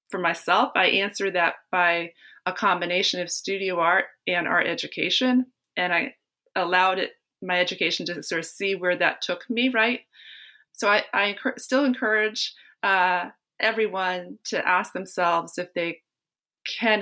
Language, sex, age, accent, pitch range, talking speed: English, female, 30-49, American, 170-220 Hz, 150 wpm